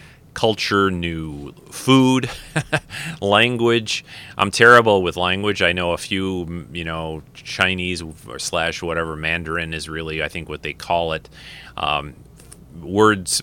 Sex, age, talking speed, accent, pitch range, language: male, 30-49, 125 wpm, American, 80-100 Hz, English